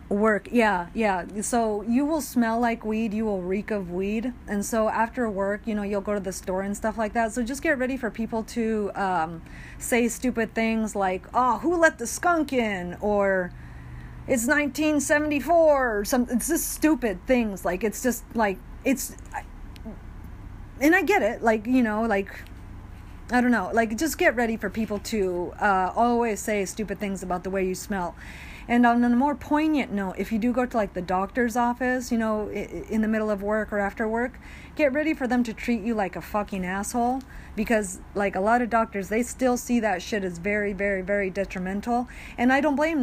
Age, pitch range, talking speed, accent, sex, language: 30-49, 200-245 Hz, 200 wpm, American, female, English